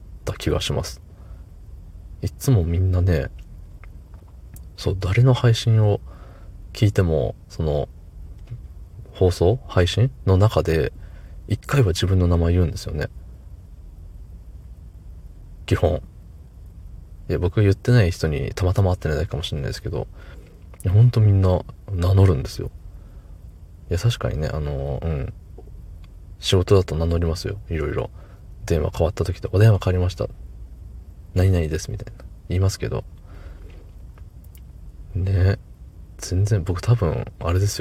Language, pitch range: Japanese, 80-100 Hz